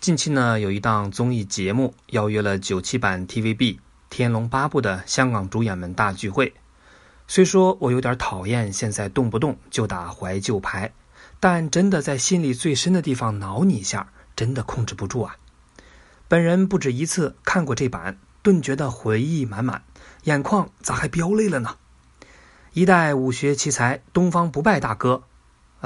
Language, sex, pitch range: Chinese, male, 110-170 Hz